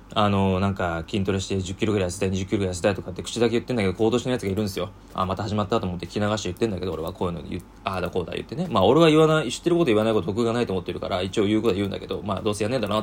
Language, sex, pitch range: Japanese, male, 95-120 Hz